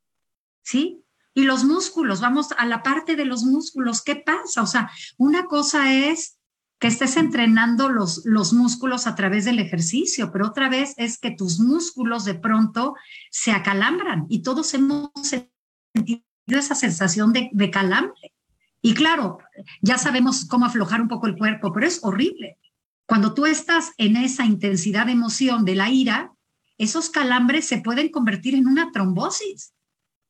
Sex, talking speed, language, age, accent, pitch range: female, 160 wpm, Spanish, 50-69, Mexican, 220-295 Hz